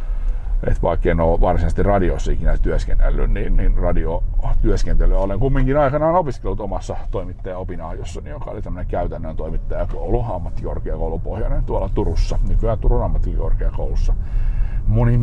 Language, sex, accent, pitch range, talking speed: Finnish, male, native, 85-110 Hz, 110 wpm